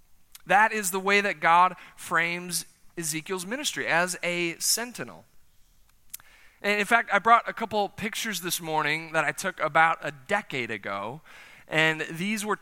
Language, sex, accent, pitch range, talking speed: English, male, American, 150-200 Hz, 145 wpm